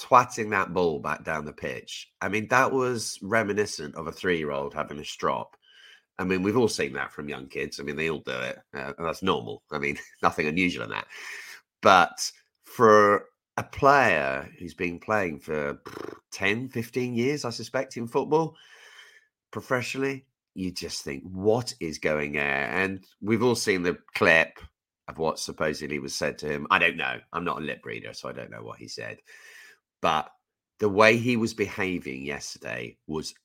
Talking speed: 185 wpm